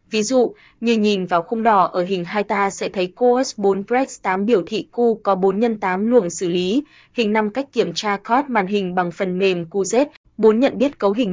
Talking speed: 235 wpm